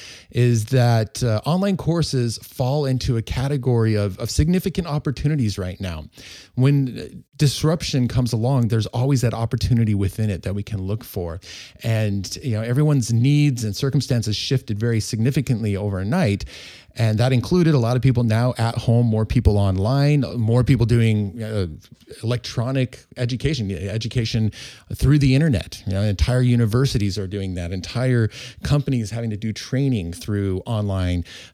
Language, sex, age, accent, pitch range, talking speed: English, male, 30-49, American, 105-130 Hz, 145 wpm